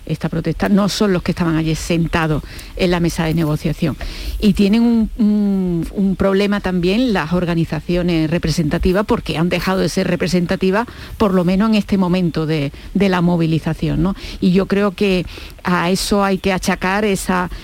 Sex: female